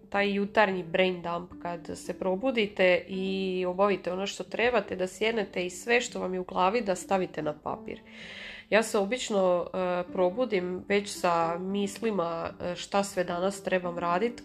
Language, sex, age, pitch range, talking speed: Croatian, female, 30-49, 180-215 Hz, 155 wpm